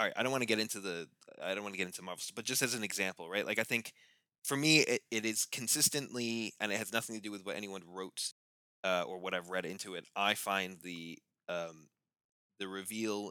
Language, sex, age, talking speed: English, male, 20-39, 240 wpm